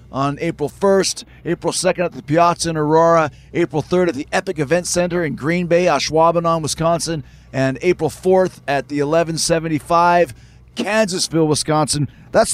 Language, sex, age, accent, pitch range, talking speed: English, male, 40-59, American, 150-200 Hz, 150 wpm